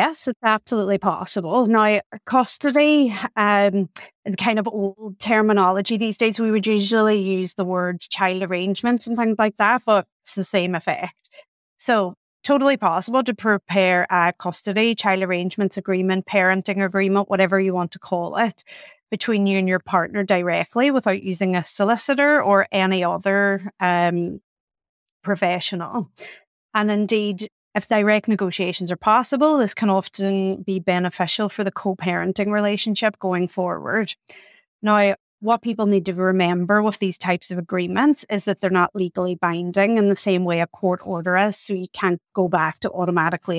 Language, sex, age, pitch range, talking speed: English, female, 30-49, 185-215 Hz, 155 wpm